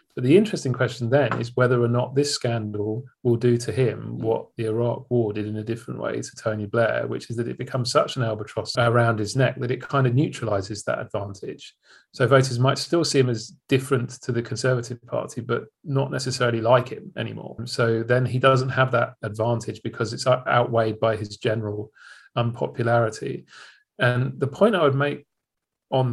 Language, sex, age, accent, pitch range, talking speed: English, male, 40-59, British, 115-140 Hz, 195 wpm